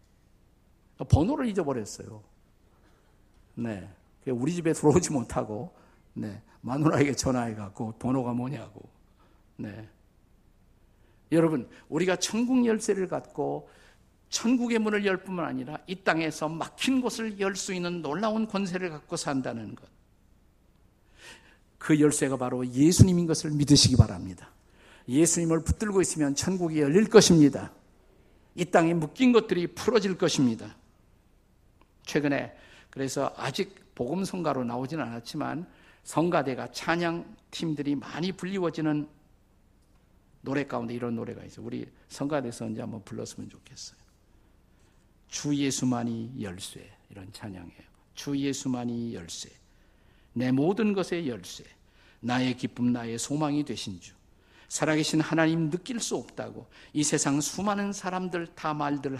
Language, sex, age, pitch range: Korean, male, 50-69, 105-165 Hz